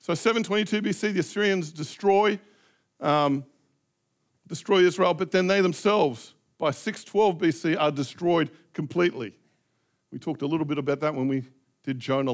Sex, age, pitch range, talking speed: male, 50-69, 145-185 Hz, 145 wpm